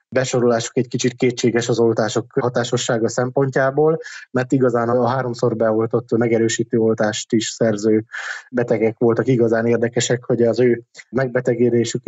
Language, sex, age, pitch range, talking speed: Hungarian, male, 20-39, 115-130 Hz, 125 wpm